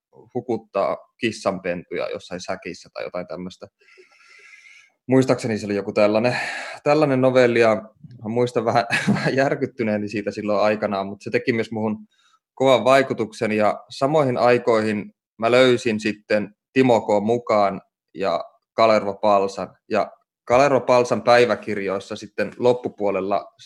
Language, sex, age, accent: Finnish, male, 20-39, native